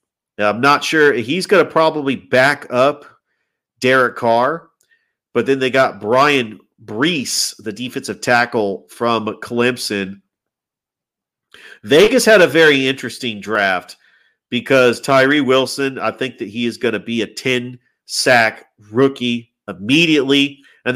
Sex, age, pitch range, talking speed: male, 40-59, 115-145 Hz, 125 wpm